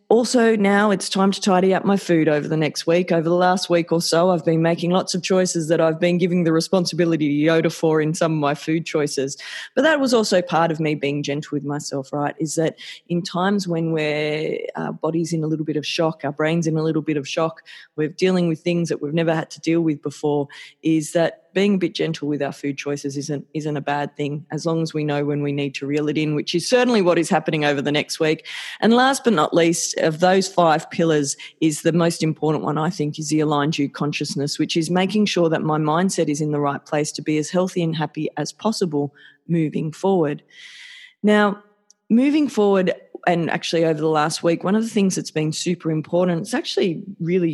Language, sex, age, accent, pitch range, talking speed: English, female, 20-39, Australian, 150-185 Hz, 230 wpm